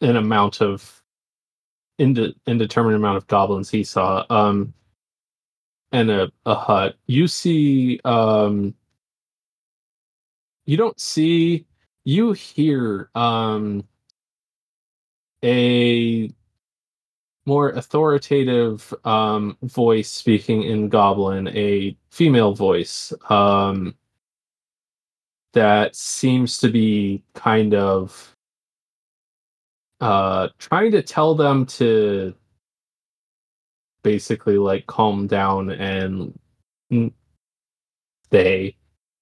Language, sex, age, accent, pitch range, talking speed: English, male, 20-39, American, 100-135 Hz, 85 wpm